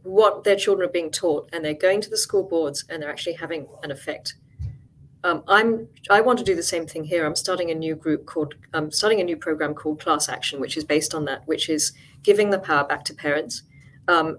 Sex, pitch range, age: female, 150-185 Hz, 40-59